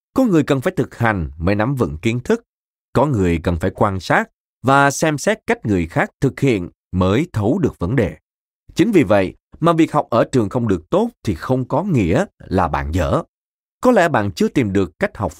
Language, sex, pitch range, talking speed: Vietnamese, male, 90-135 Hz, 220 wpm